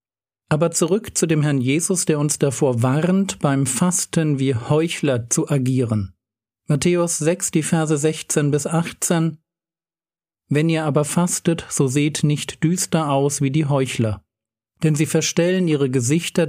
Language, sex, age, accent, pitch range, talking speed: German, male, 50-69, German, 135-165 Hz, 145 wpm